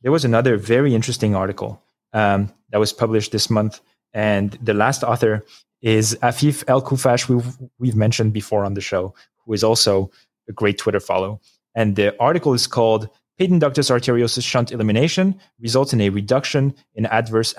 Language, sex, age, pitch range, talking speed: English, male, 20-39, 110-130 Hz, 170 wpm